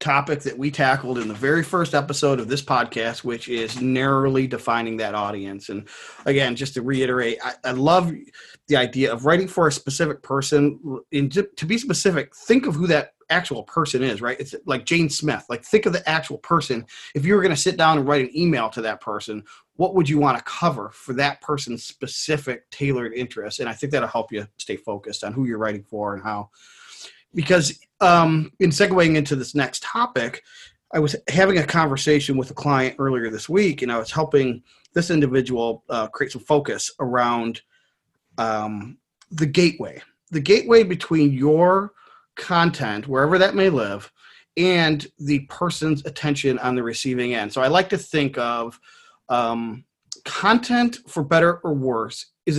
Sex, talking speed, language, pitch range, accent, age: male, 180 wpm, English, 125-170 Hz, American, 30-49